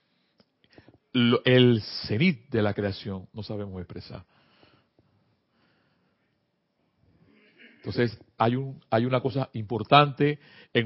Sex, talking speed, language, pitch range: male, 85 wpm, Spanish, 110-165 Hz